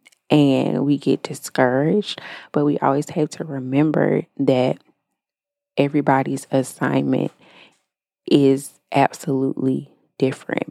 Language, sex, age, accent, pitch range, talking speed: English, female, 20-39, American, 135-170 Hz, 90 wpm